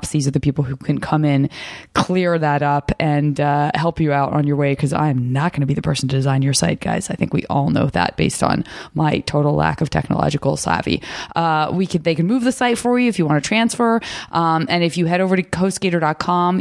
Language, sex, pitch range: English, female, 145-180 Hz